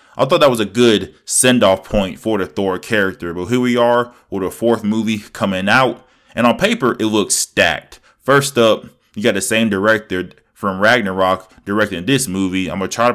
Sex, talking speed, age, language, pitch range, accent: male, 200 wpm, 20-39, English, 95-120 Hz, American